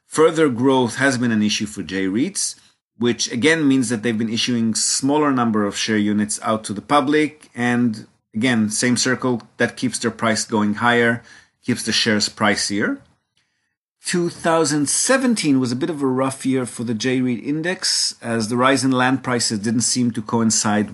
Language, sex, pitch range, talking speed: English, male, 110-135 Hz, 170 wpm